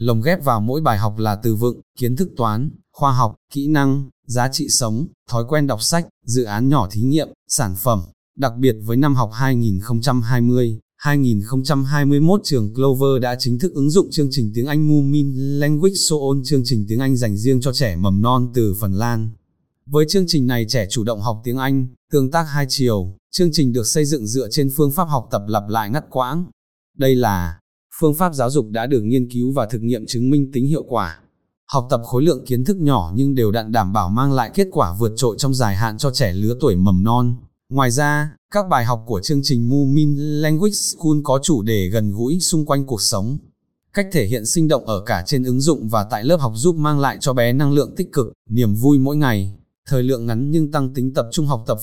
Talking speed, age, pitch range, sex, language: 225 wpm, 20-39, 115-145 Hz, male, Vietnamese